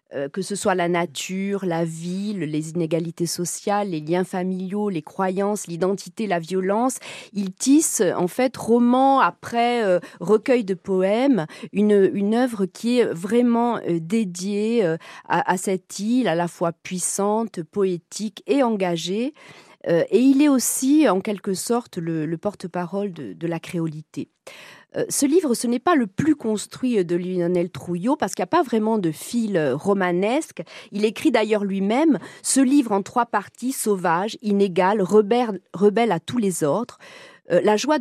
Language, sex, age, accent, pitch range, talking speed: French, female, 40-59, French, 180-235 Hz, 150 wpm